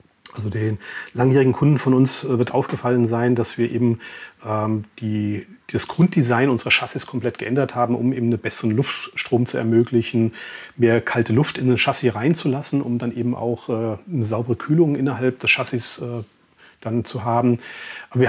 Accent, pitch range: German, 120-140 Hz